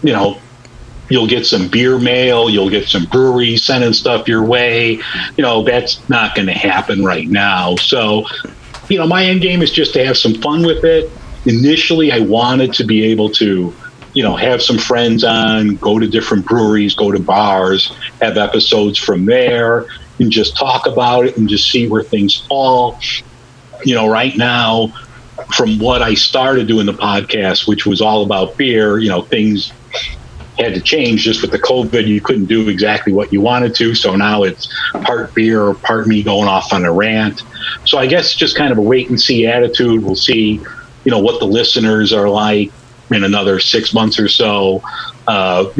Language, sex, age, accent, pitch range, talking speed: English, male, 50-69, American, 105-125 Hz, 190 wpm